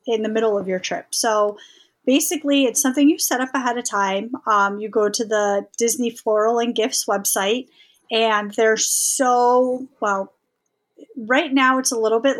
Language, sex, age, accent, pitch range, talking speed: English, female, 30-49, American, 205-255 Hz, 175 wpm